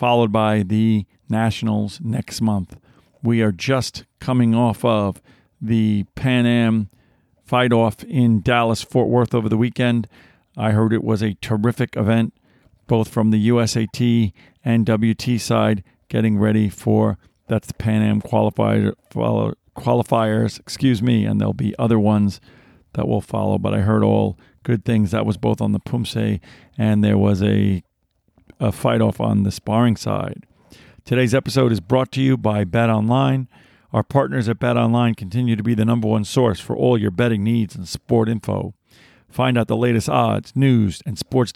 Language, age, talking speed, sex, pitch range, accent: English, 50-69, 165 wpm, male, 105-120 Hz, American